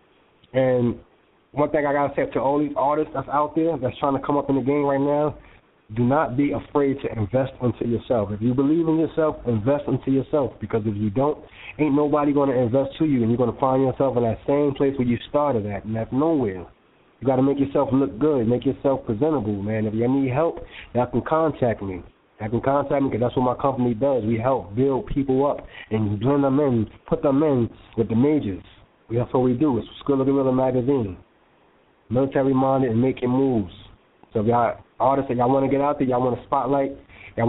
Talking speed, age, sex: 225 wpm, 20-39, male